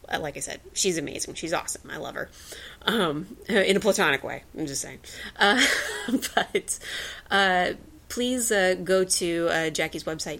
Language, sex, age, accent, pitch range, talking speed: English, female, 30-49, American, 155-190 Hz, 160 wpm